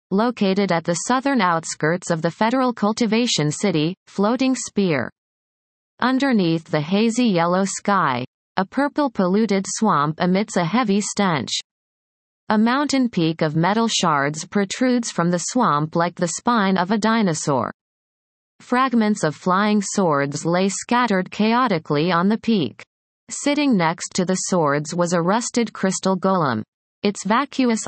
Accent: American